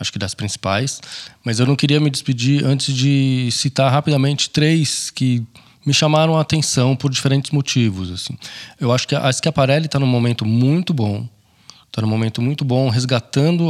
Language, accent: Portuguese, Brazilian